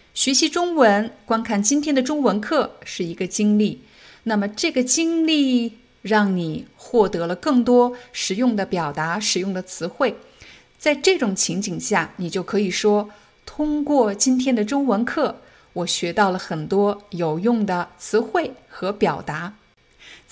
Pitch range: 195-255 Hz